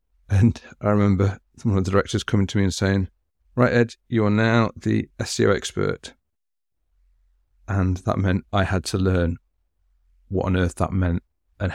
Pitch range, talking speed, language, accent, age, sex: 90-110 Hz, 170 wpm, English, British, 40-59, male